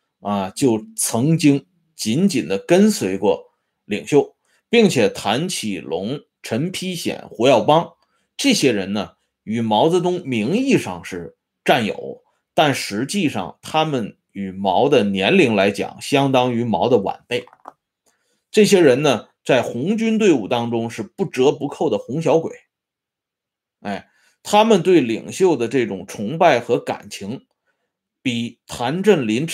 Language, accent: Swedish, Chinese